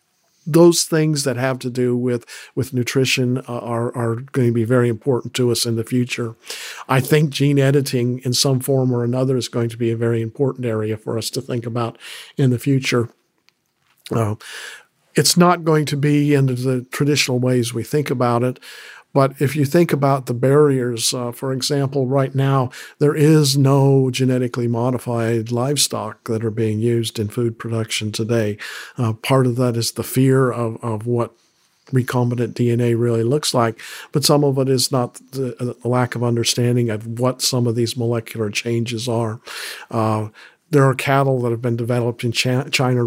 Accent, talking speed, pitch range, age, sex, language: American, 180 wpm, 120-135 Hz, 50-69, male, English